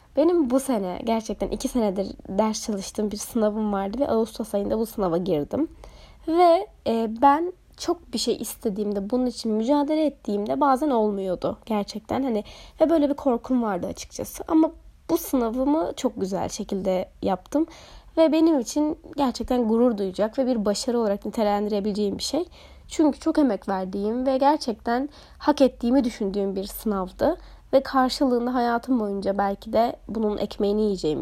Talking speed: 150 wpm